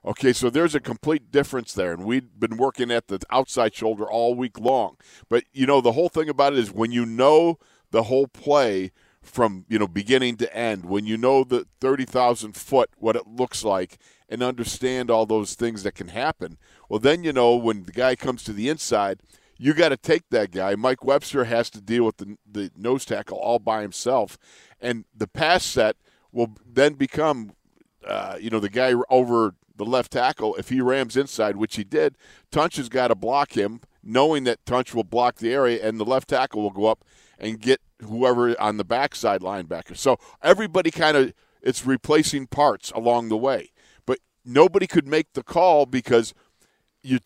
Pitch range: 110-135 Hz